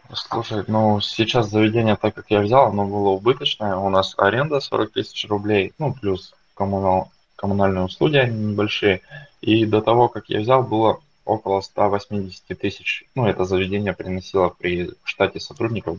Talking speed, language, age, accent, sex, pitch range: 155 wpm, Russian, 20-39, native, male, 95-110 Hz